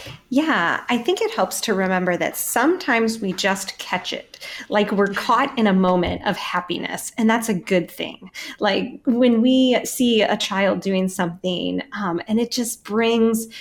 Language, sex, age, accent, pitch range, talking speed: English, female, 30-49, American, 180-235 Hz, 170 wpm